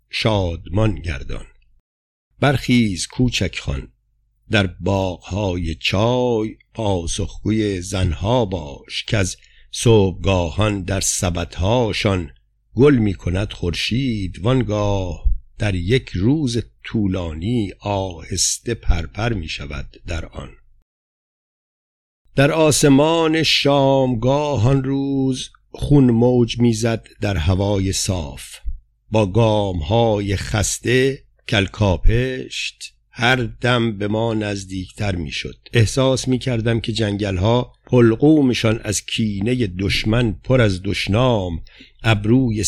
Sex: male